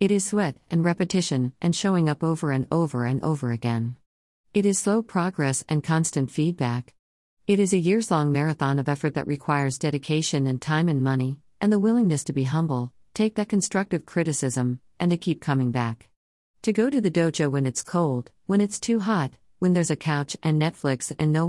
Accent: American